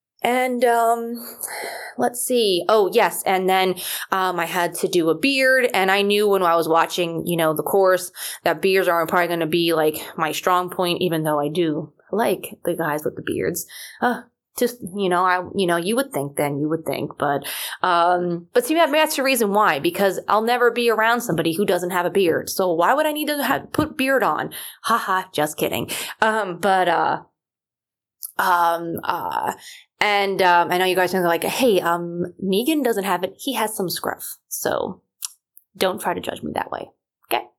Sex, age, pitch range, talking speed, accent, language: female, 20-39, 170-225 Hz, 200 wpm, American, English